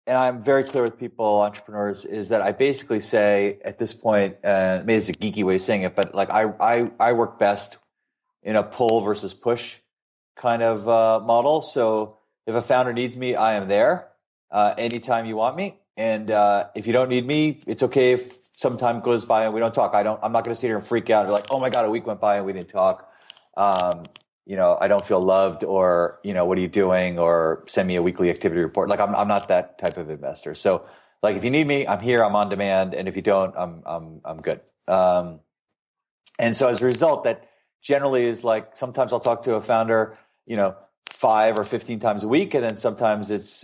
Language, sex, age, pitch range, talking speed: English, male, 30-49, 100-120 Hz, 235 wpm